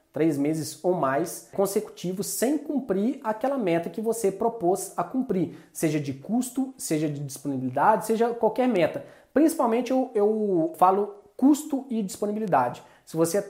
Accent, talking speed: Brazilian, 140 wpm